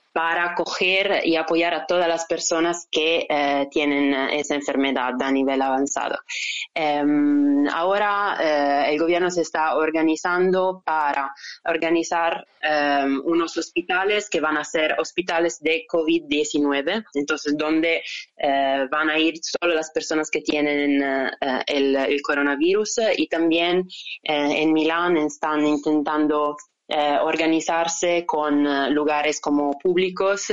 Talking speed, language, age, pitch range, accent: 130 wpm, Spanish, 20-39, 145-165 Hz, Italian